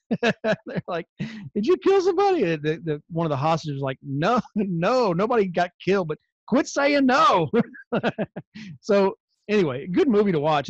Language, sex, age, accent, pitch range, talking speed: English, male, 40-59, American, 140-180 Hz, 165 wpm